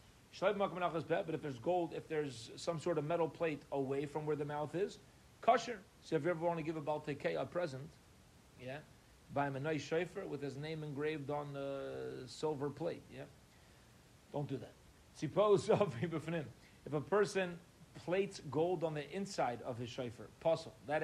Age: 40-59